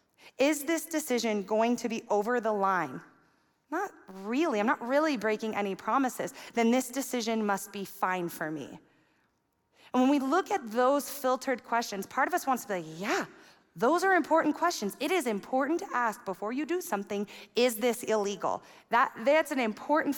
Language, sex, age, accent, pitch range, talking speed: English, female, 30-49, American, 195-255 Hz, 180 wpm